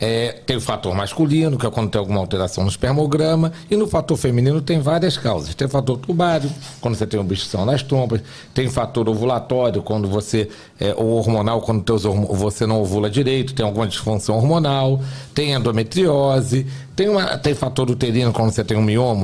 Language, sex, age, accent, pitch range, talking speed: Portuguese, male, 60-79, Brazilian, 110-160 Hz, 195 wpm